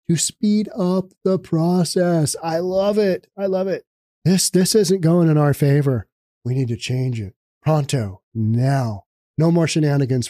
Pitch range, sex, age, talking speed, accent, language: 135-180 Hz, male, 40-59, 165 wpm, American, English